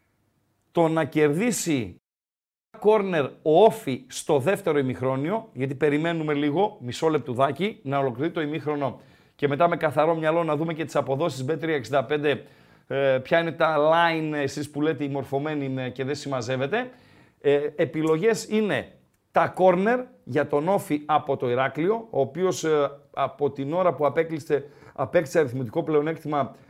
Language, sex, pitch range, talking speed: Greek, male, 140-190 Hz, 140 wpm